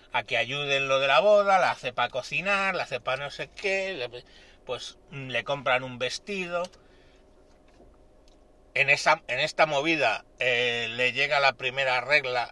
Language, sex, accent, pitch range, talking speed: Spanish, male, Spanish, 120-160 Hz, 165 wpm